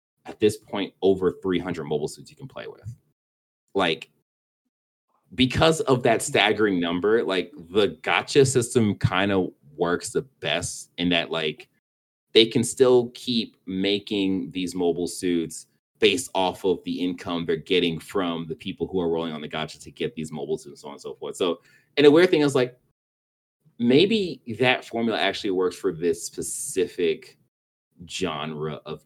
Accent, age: American, 30-49